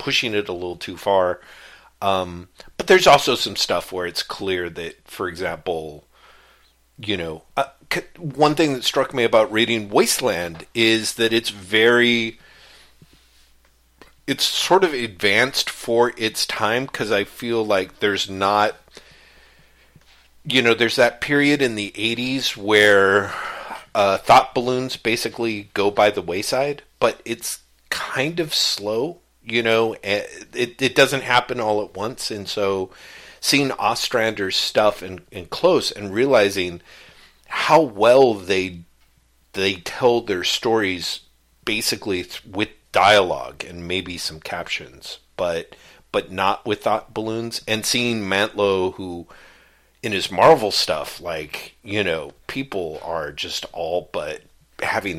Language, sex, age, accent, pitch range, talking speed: English, male, 40-59, American, 90-120 Hz, 135 wpm